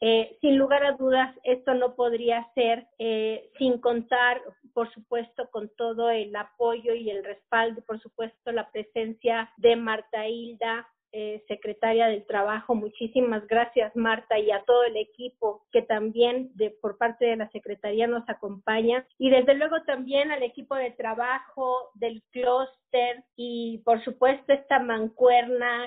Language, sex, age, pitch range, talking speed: Spanish, female, 40-59, 225-255 Hz, 150 wpm